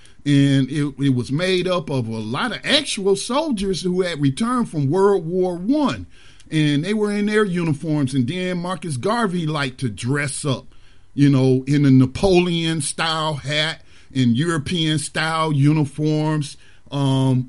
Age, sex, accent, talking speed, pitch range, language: 40-59, male, American, 155 wpm, 130-175 Hz, English